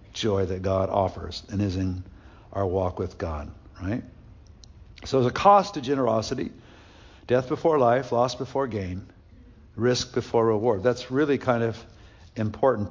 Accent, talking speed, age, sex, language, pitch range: American, 150 wpm, 60-79, male, English, 95-120 Hz